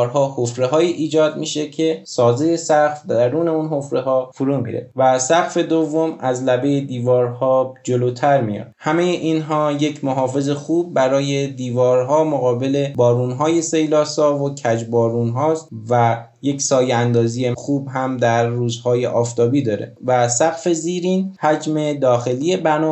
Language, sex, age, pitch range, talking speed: Persian, male, 20-39, 125-155 Hz, 135 wpm